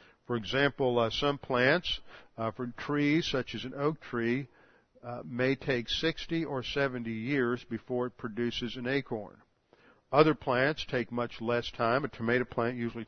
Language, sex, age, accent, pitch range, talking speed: English, male, 50-69, American, 115-140 Hz, 160 wpm